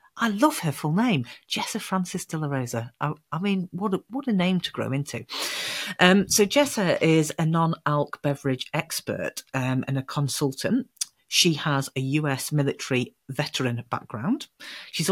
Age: 40-59